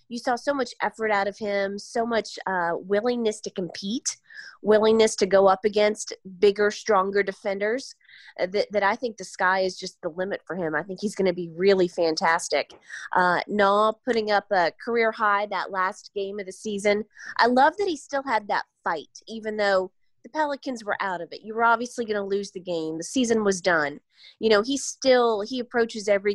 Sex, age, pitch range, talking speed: female, 30-49, 190-240 Hz, 210 wpm